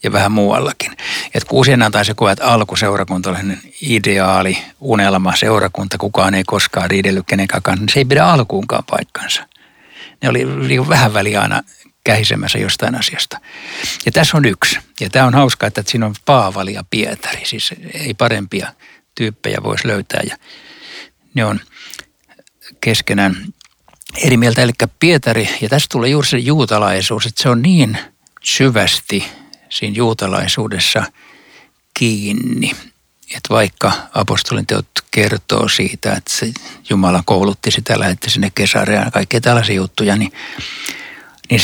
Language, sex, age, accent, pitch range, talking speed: Finnish, male, 60-79, native, 95-120 Hz, 135 wpm